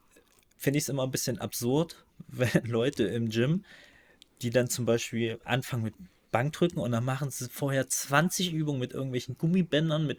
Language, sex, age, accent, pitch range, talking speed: German, male, 20-39, German, 115-140 Hz, 170 wpm